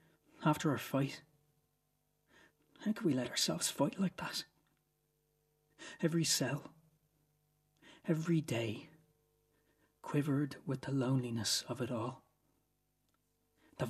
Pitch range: 140-155 Hz